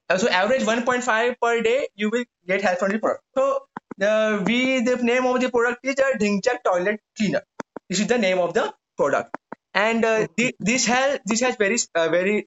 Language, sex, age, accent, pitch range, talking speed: Hindi, male, 20-39, native, 200-255 Hz, 220 wpm